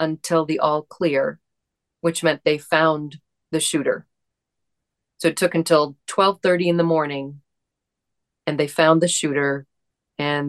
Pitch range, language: 150-175 Hz, English